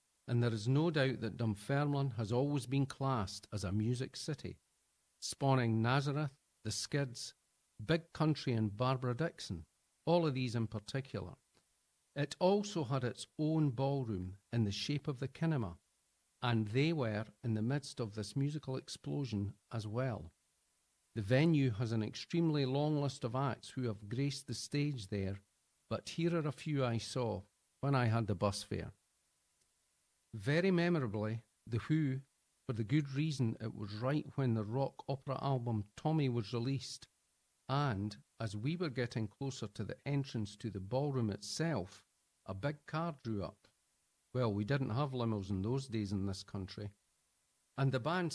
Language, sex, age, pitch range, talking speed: English, male, 50-69, 105-140 Hz, 165 wpm